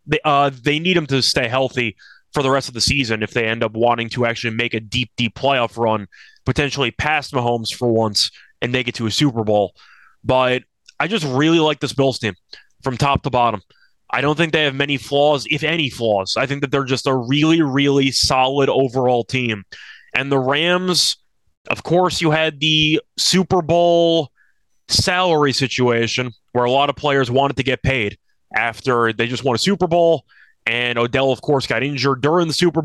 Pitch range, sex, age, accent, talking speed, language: 125-150 Hz, male, 20-39, American, 200 wpm, English